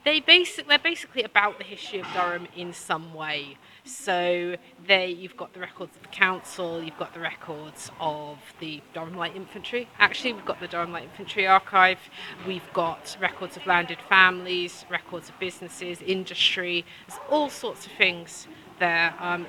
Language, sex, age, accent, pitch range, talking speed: English, female, 30-49, British, 160-190 Hz, 165 wpm